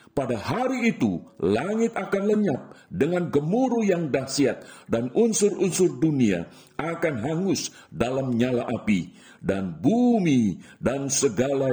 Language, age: Indonesian, 50-69